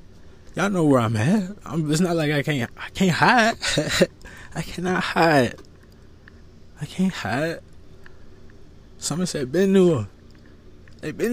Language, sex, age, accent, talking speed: English, male, 20-39, American, 140 wpm